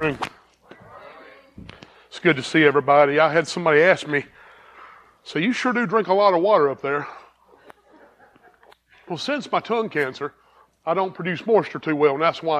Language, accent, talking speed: English, American, 165 wpm